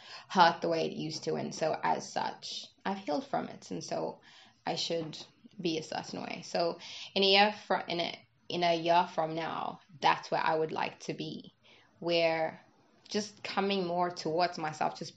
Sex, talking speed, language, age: female, 190 wpm, English, 20-39